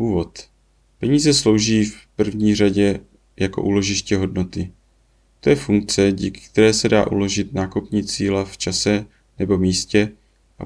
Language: Czech